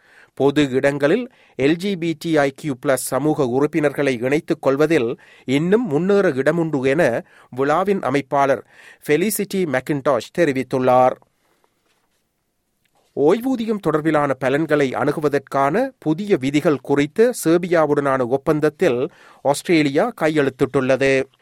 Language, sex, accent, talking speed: Tamil, male, native, 85 wpm